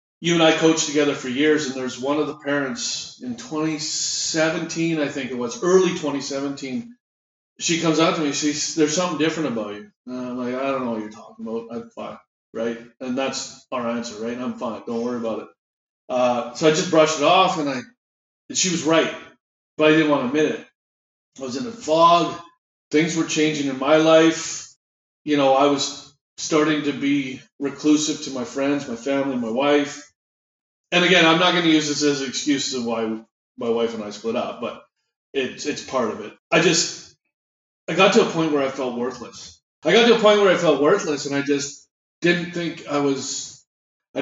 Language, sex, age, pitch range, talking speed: English, male, 30-49, 135-165 Hz, 210 wpm